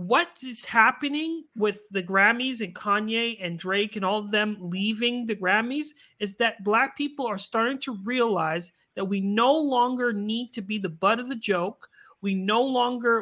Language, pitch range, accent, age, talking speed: English, 195-255 Hz, American, 30-49, 180 wpm